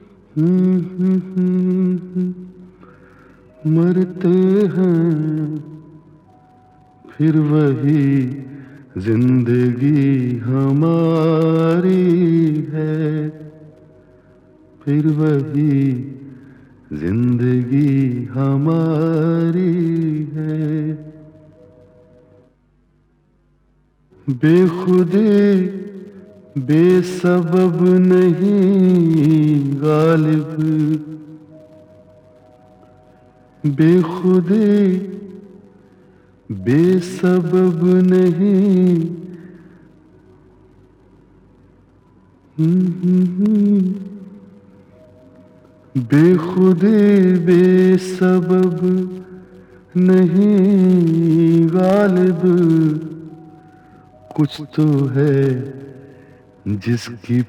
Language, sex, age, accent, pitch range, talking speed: English, male, 50-69, Indian, 140-180 Hz, 35 wpm